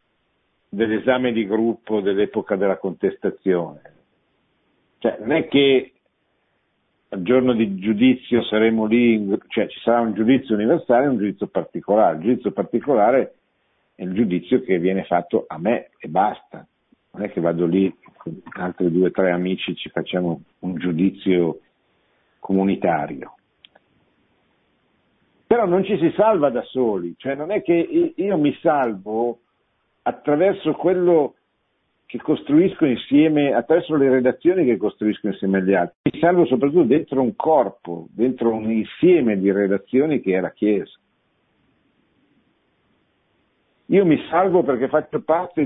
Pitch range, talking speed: 95-135 Hz, 135 wpm